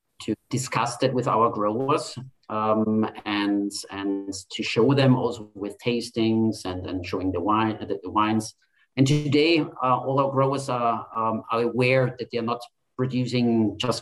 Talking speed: 165 wpm